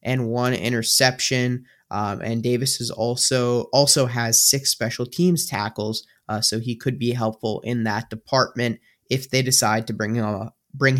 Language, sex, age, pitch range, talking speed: English, male, 20-39, 115-135 Hz, 170 wpm